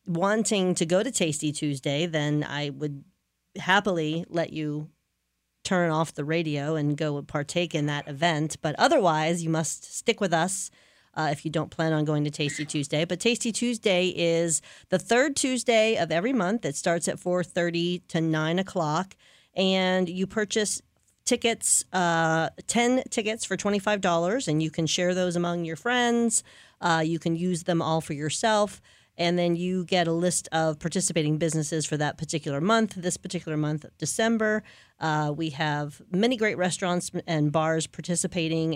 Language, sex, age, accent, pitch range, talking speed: English, female, 40-59, American, 155-190 Hz, 165 wpm